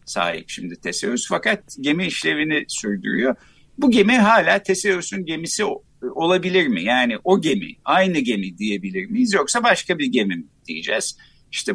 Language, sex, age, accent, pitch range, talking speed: Turkish, male, 60-79, native, 130-210 Hz, 140 wpm